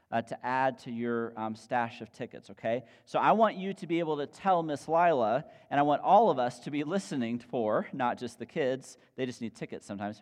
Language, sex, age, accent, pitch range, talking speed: English, male, 40-59, American, 110-150 Hz, 235 wpm